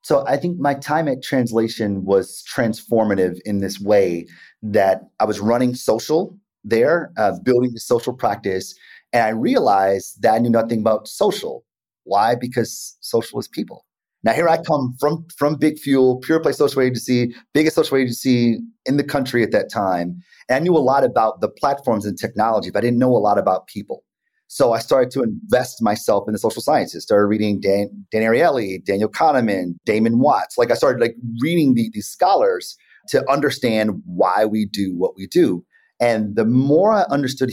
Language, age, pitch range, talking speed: English, 30-49, 110-155 Hz, 185 wpm